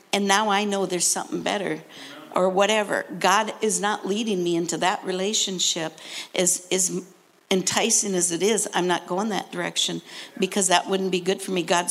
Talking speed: 180 wpm